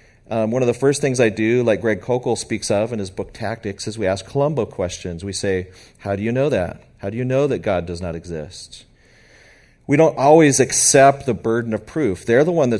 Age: 40-59